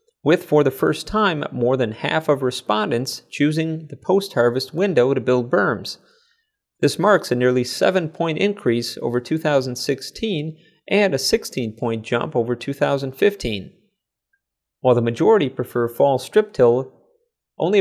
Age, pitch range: 30-49, 125-170 Hz